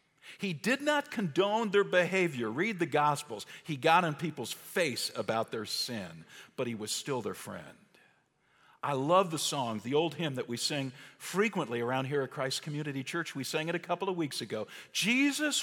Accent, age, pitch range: American, 50-69, 125-160 Hz